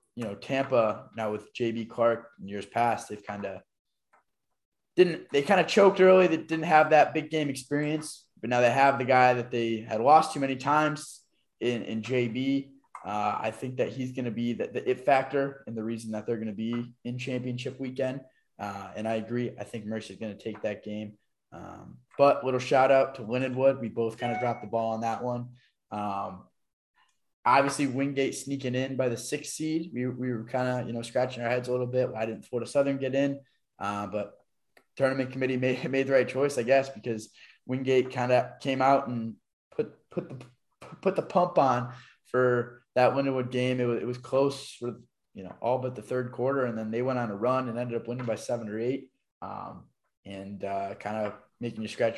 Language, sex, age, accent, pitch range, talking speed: English, male, 20-39, American, 110-135 Hz, 215 wpm